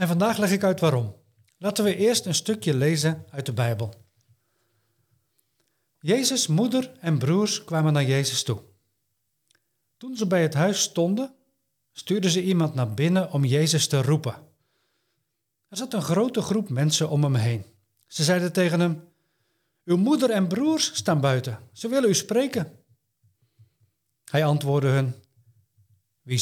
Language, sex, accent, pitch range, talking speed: Dutch, male, Dutch, 125-185 Hz, 150 wpm